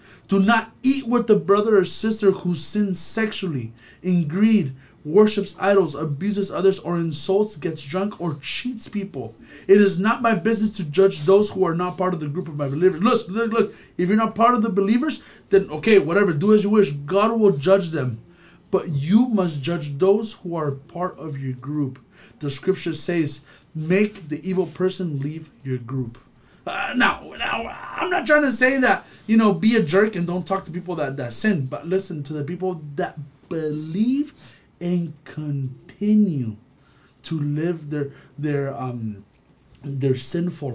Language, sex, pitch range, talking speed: English, male, 145-200 Hz, 180 wpm